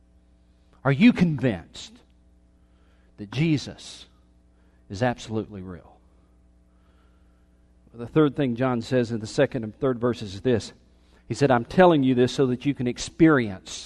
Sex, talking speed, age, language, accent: male, 140 wpm, 40-59, English, American